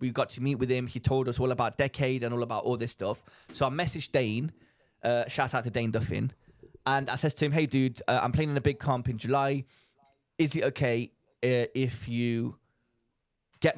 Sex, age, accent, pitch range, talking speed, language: male, 20-39, British, 120-140 Hz, 220 wpm, English